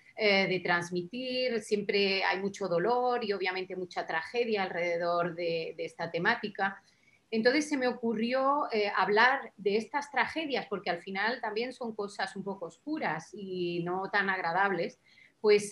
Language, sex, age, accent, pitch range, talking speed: Spanish, female, 30-49, Spanish, 185-235 Hz, 145 wpm